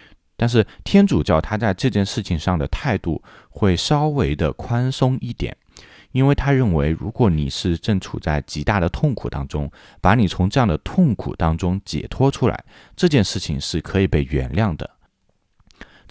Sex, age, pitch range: male, 20-39, 80-120 Hz